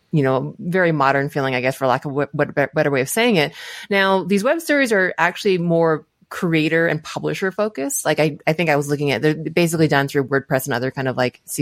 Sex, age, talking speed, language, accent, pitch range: female, 20-39, 240 wpm, English, American, 145-180 Hz